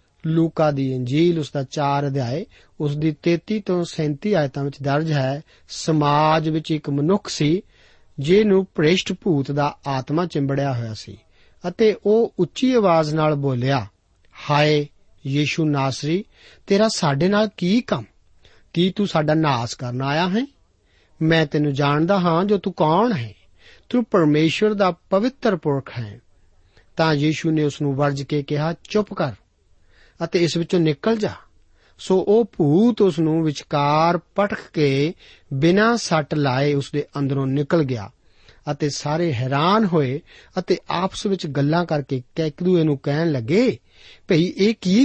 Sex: male